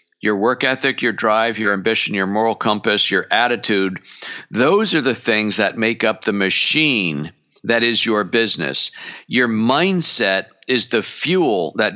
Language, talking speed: English, 155 wpm